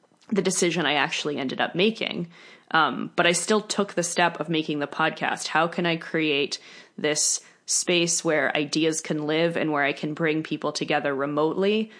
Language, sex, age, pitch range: English, female, 20-39, 150-175 Hz